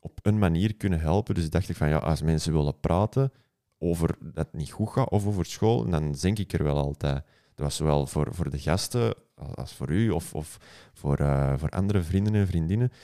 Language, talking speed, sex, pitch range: Dutch, 225 wpm, male, 80-105 Hz